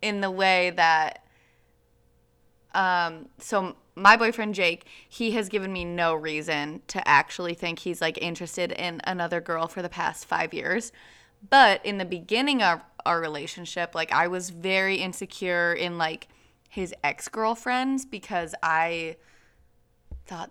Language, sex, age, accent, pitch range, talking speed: English, female, 20-39, American, 165-205 Hz, 140 wpm